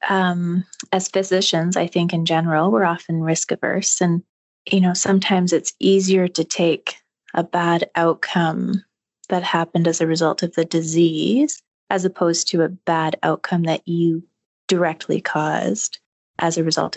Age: 30-49